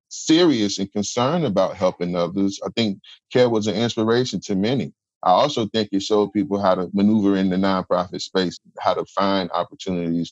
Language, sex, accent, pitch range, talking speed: English, male, American, 90-110 Hz, 180 wpm